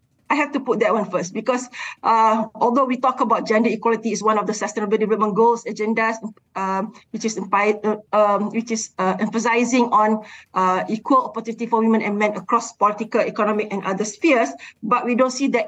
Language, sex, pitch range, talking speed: English, female, 215-255 Hz, 200 wpm